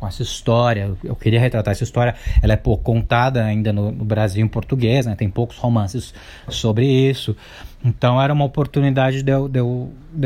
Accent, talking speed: Brazilian, 195 wpm